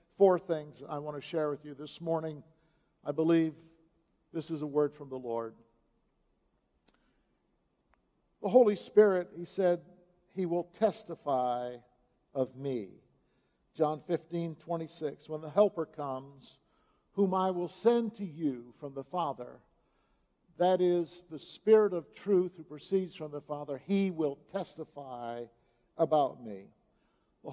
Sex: male